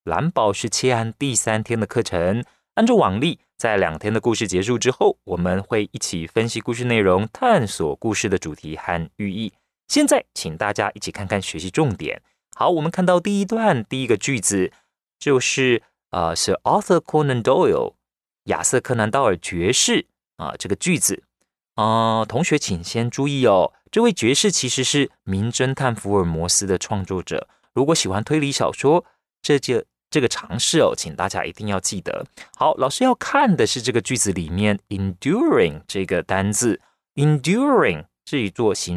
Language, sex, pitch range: Chinese, male, 100-145 Hz